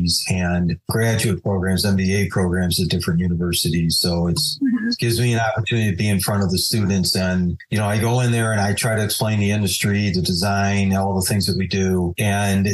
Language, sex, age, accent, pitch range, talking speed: English, male, 40-59, American, 95-115 Hz, 205 wpm